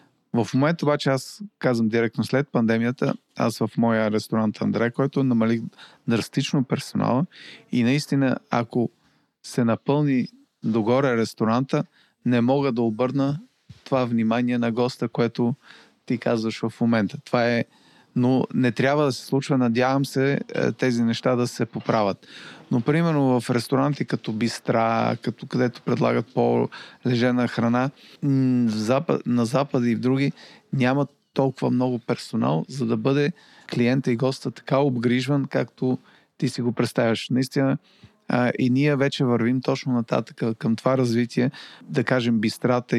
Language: Bulgarian